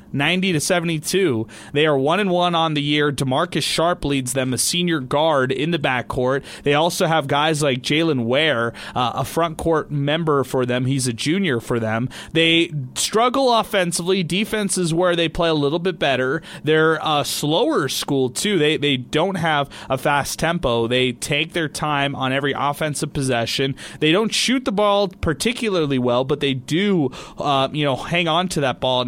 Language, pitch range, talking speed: English, 135-175 Hz, 190 wpm